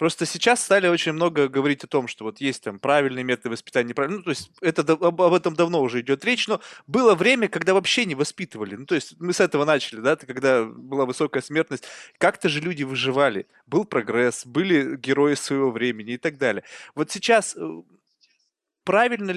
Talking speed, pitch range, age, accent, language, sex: 185 wpm, 145-190 Hz, 20-39, native, Russian, male